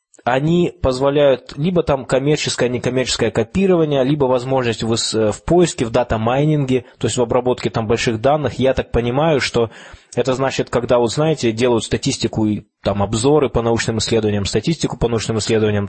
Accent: native